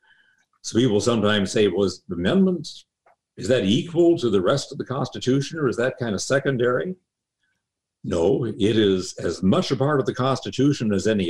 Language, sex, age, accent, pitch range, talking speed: English, male, 60-79, American, 95-140 Hz, 185 wpm